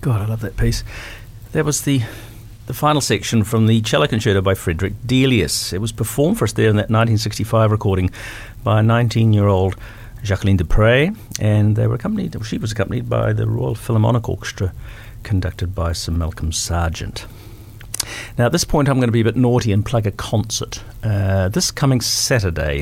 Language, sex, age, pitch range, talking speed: English, male, 50-69, 105-120 Hz, 180 wpm